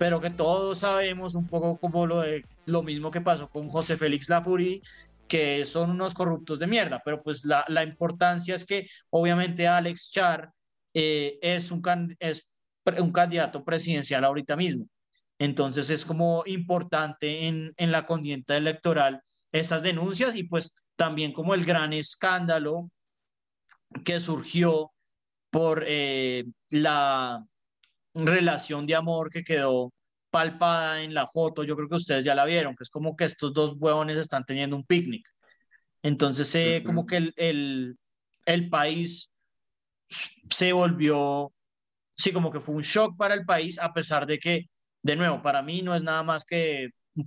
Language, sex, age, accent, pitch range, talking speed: Spanish, male, 30-49, Colombian, 150-170 Hz, 160 wpm